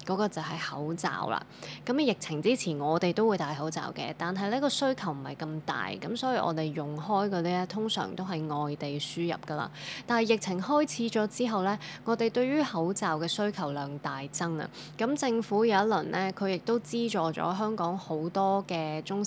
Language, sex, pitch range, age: Chinese, female, 160-205 Hz, 20-39